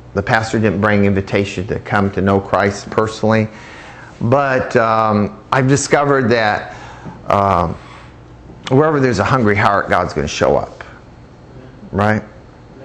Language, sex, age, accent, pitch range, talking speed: English, male, 50-69, American, 105-140 Hz, 130 wpm